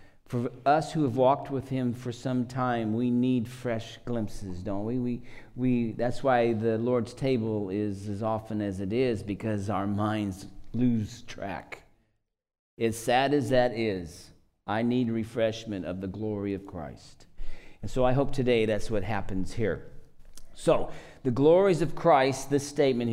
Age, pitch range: 50-69, 105-135 Hz